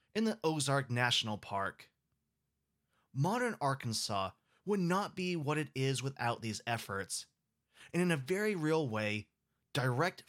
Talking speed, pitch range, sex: 135 wpm, 110-165 Hz, male